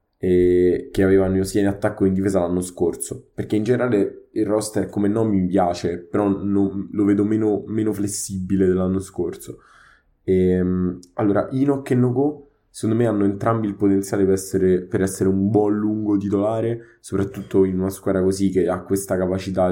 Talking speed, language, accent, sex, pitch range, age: 175 wpm, Italian, native, male, 90-105 Hz, 20-39